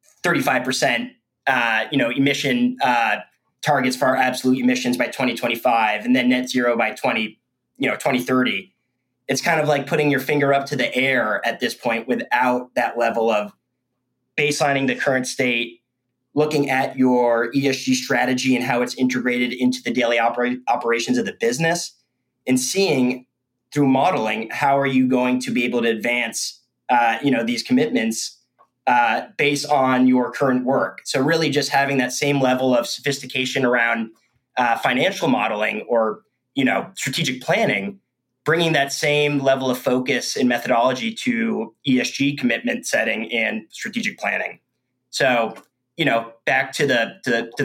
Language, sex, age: English, male, 20-39